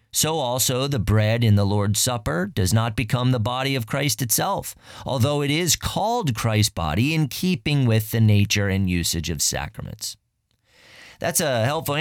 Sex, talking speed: male, 170 wpm